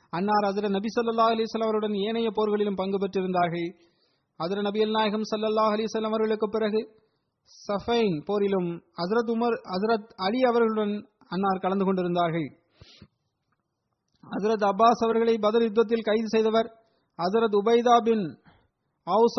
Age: 30-49